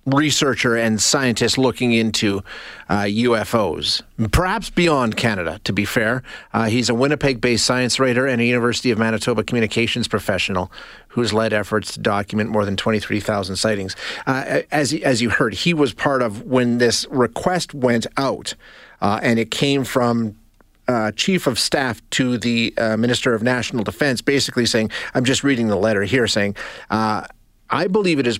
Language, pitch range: English, 110-130 Hz